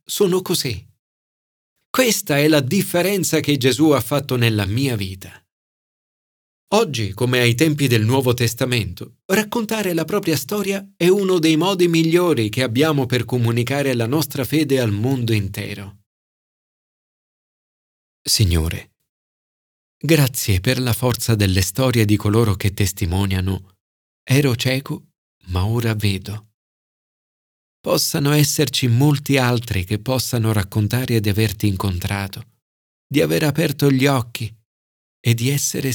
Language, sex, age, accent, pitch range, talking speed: Italian, male, 40-59, native, 105-150 Hz, 120 wpm